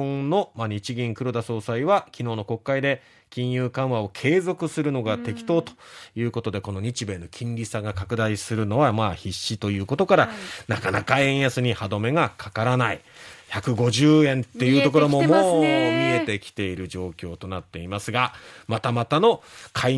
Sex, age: male, 30-49